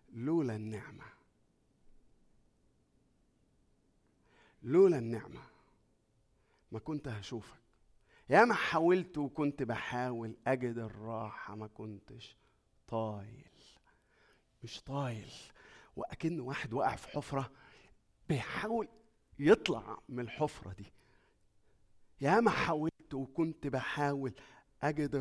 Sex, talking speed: male, 85 wpm